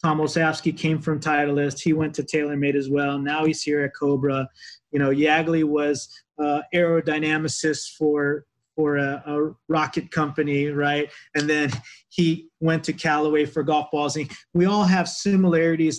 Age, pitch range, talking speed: 30-49, 140-160 Hz, 160 wpm